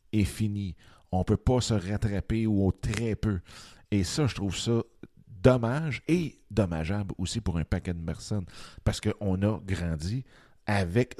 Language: French